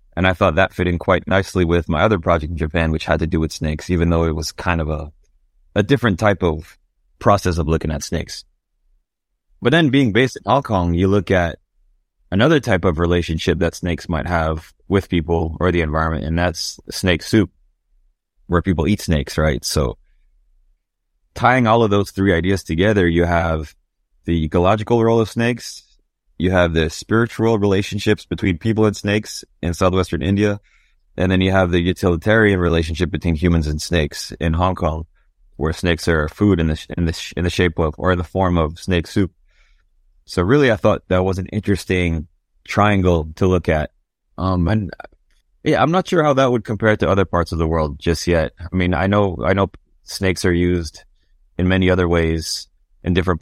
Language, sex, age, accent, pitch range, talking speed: English, male, 30-49, American, 80-100 Hz, 195 wpm